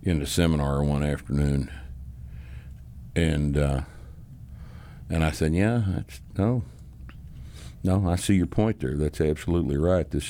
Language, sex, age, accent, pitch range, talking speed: English, male, 60-79, American, 75-105 Hz, 130 wpm